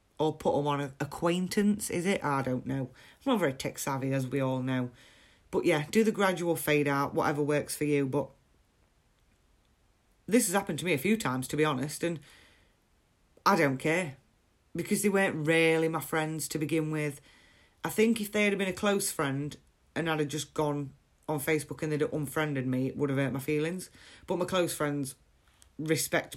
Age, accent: 30-49, British